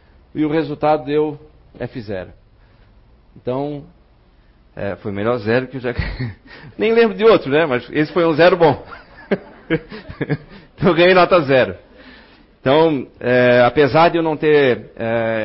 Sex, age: male, 40-59